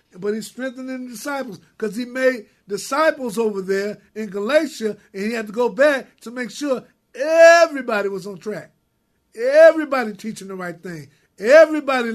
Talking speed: 160 wpm